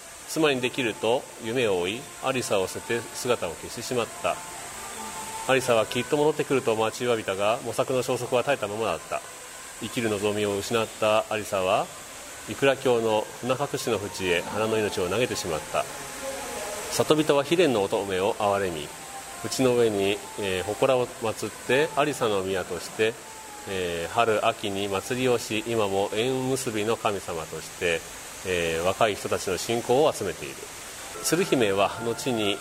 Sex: male